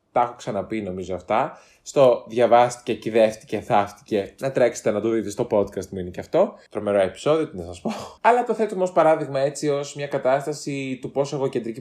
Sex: male